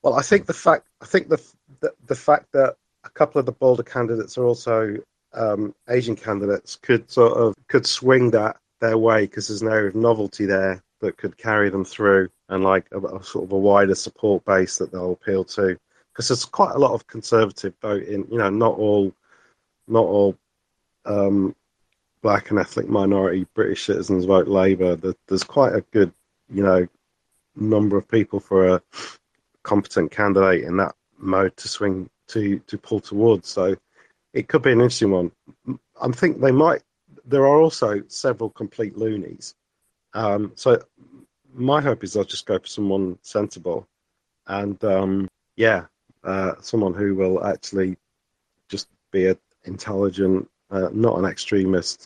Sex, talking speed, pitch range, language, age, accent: male, 170 wpm, 95-115 Hz, English, 40-59, British